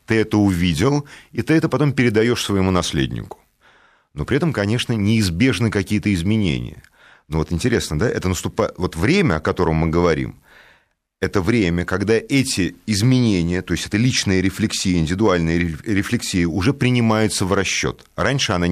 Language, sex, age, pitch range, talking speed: Russian, male, 30-49, 90-125 Hz, 150 wpm